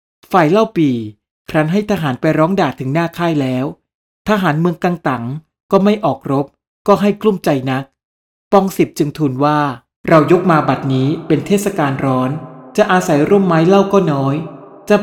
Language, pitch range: Thai, 135-180 Hz